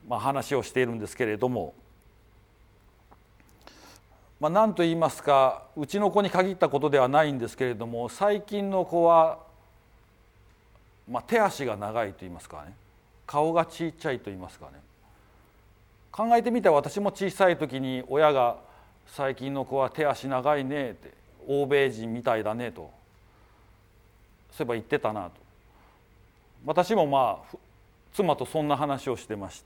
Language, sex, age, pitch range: Japanese, male, 40-59, 110-155 Hz